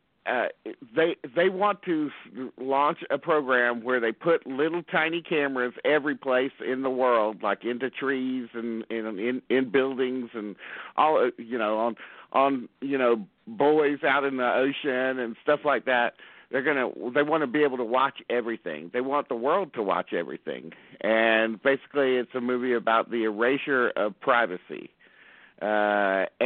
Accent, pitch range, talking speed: American, 120-145 Hz, 165 wpm